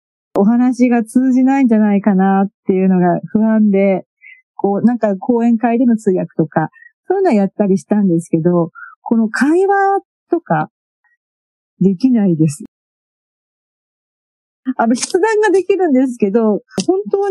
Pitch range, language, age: 190-255 Hz, Japanese, 50-69